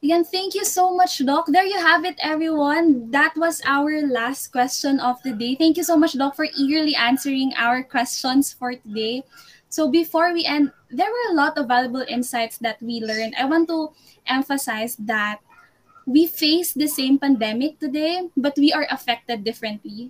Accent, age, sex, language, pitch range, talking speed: native, 20-39, female, Filipino, 235-295 Hz, 180 wpm